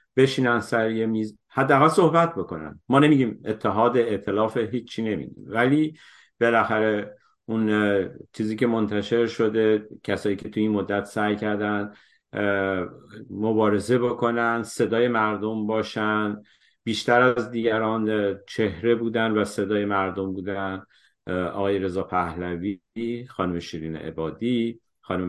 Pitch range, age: 95-115 Hz, 50-69